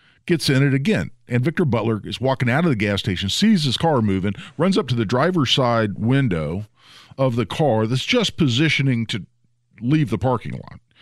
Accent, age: American, 50-69